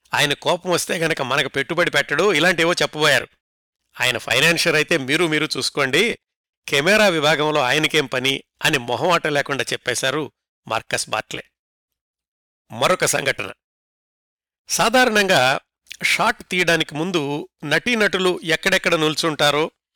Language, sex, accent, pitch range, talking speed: Telugu, male, native, 145-185 Hz, 100 wpm